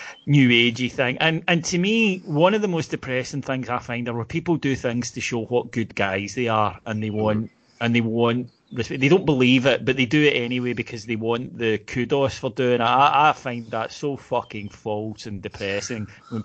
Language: English